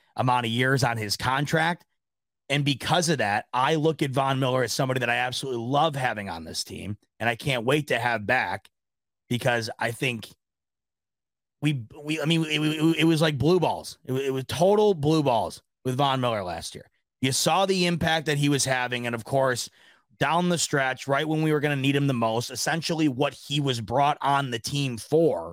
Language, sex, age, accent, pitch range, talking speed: English, male, 30-49, American, 120-155 Hz, 210 wpm